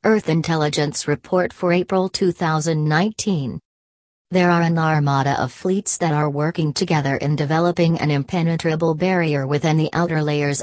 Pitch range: 145-170 Hz